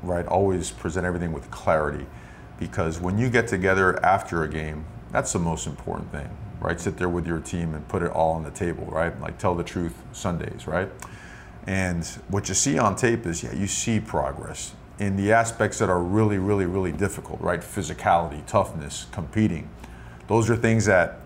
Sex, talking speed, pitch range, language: male, 190 wpm, 85-115 Hz, English